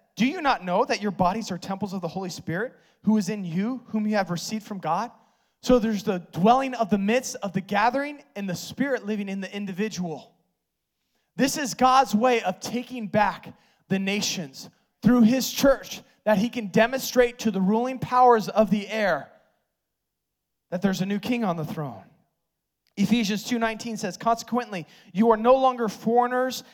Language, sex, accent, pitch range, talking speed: English, male, American, 205-250 Hz, 180 wpm